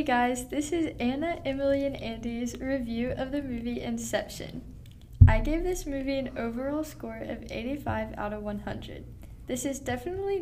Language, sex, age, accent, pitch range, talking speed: English, female, 10-29, American, 205-265 Hz, 160 wpm